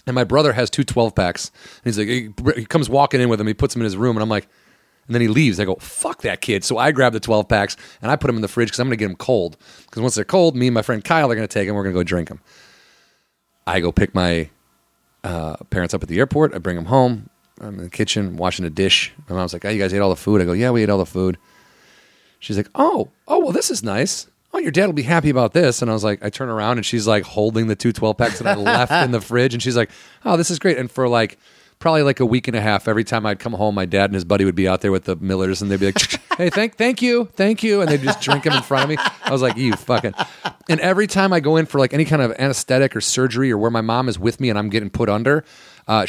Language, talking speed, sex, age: English, 305 wpm, male, 30-49